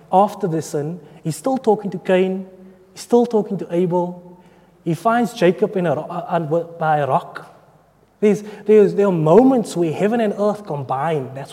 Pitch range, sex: 155-205 Hz, male